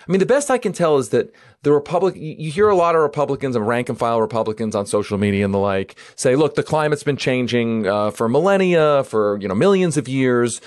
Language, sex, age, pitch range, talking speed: English, male, 40-59, 110-155 Hz, 240 wpm